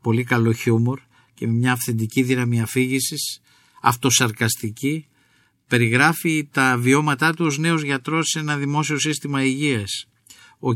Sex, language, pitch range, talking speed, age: male, Greek, 120-145 Hz, 130 wpm, 50-69